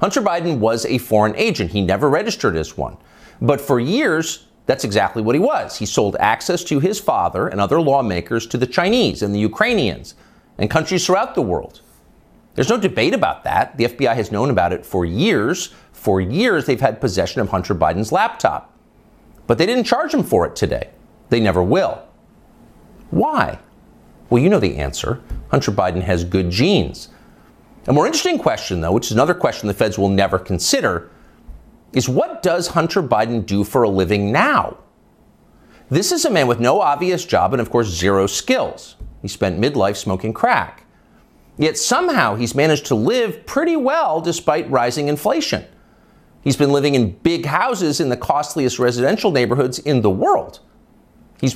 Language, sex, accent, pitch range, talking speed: English, male, American, 100-155 Hz, 175 wpm